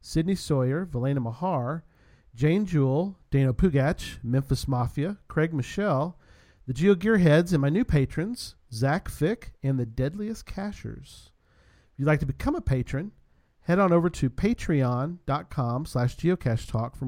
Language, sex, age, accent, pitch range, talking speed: English, male, 40-59, American, 115-160 Hz, 135 wpm